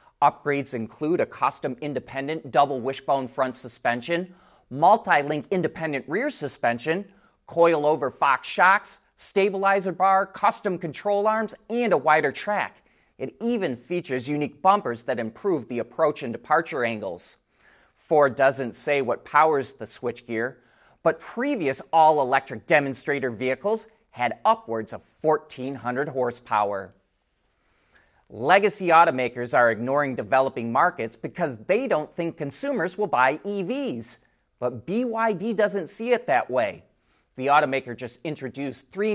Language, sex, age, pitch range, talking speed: English, male, 30-49, 120-180 Hz, 125 wpm